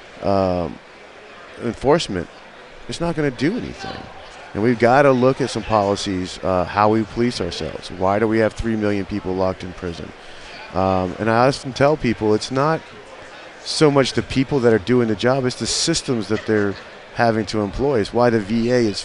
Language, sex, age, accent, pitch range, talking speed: English, male, 30-49, American, 100-125 Hz, 190 wpm